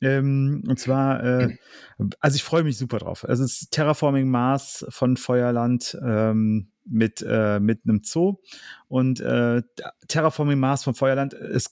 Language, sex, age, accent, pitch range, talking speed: German, male, 30-49, German, 115-140 Hz, 130 wpm